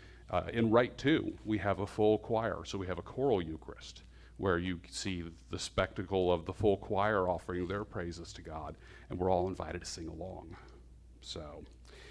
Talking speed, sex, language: 185 wpm, male, English